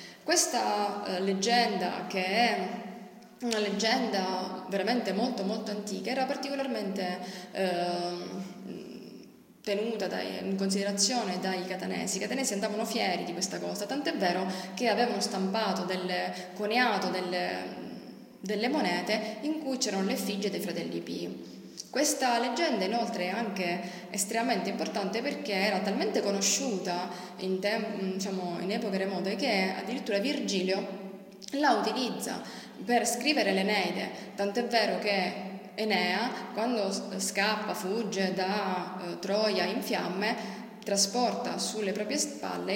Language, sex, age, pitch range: Italian, female, 20-39, 185-225 Hz